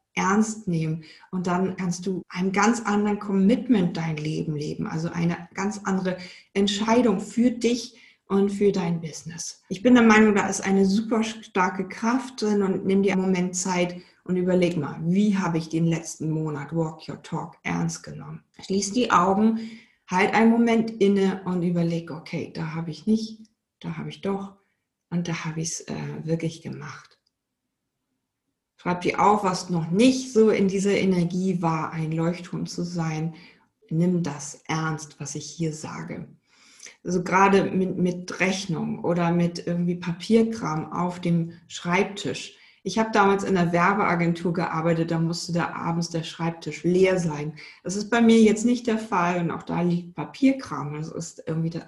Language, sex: German, female